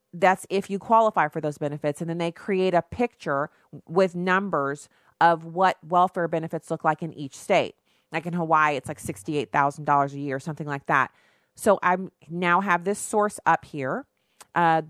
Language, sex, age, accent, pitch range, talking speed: English, female, 30-49, American, 155-185 Hz, 175 wpm